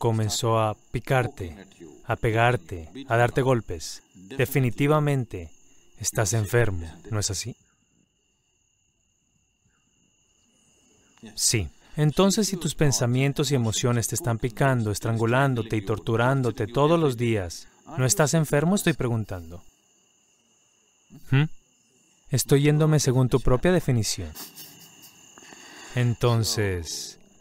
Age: 30-49